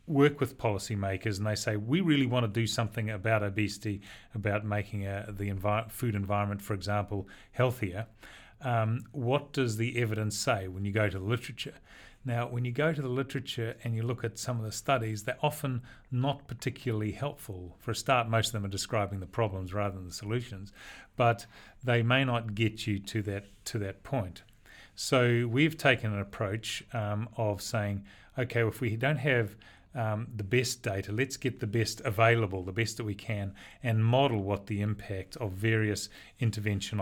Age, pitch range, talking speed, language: 40-59, 105-125 Hz, 185 wpm, English